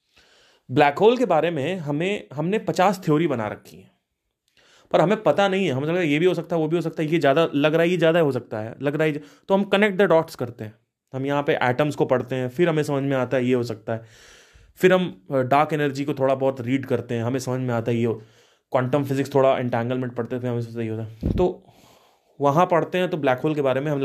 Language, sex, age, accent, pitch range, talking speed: Hindi, male, 30-49, native, 125-170 Hz, 260 wpm